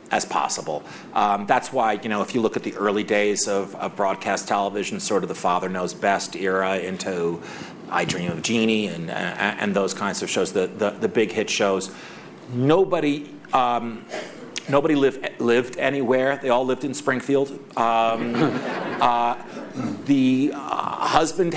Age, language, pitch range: 40-59, English, 115-145 Hz